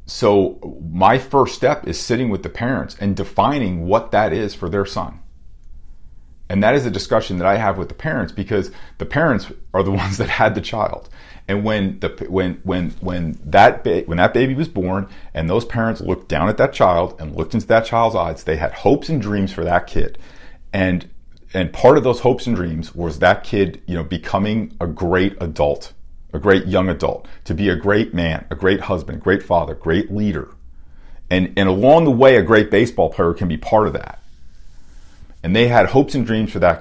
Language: English